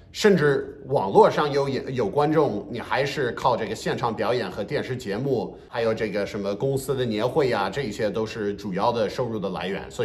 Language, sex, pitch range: Chinese, male, 110-150 Hz